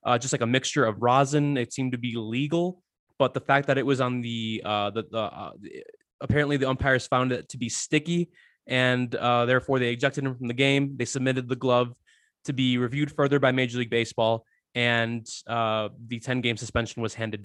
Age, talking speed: 20-39, 210 wpm